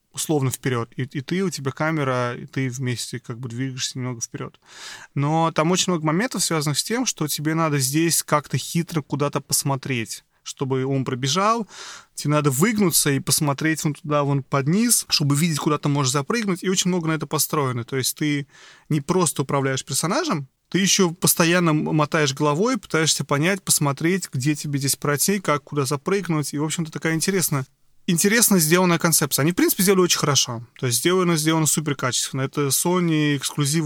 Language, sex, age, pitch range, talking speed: Russian, male, 30-49, 135-170 Hz, 180 wpm